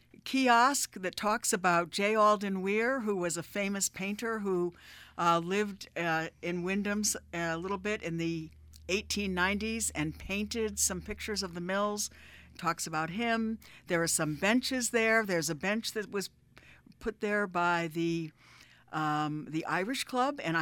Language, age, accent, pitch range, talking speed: English, 60-79, American, 175-225 Hz, 155 wpm